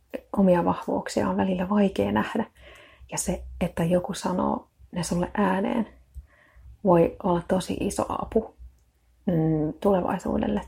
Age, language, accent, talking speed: 30-49, Finnish, native, 110 wpm